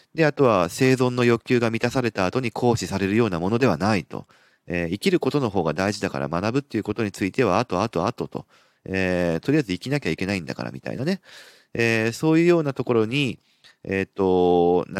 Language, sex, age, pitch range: Japanese, male, 40-59, 90-125 Hz